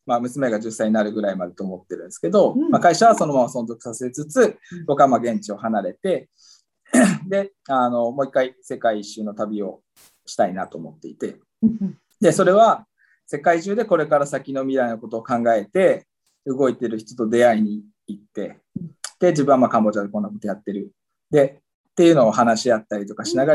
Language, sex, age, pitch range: Japanese, male, 20-39, 110-165 Hz